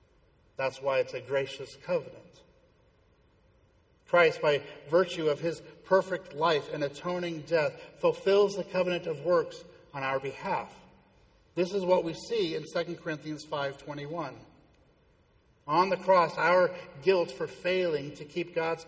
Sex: male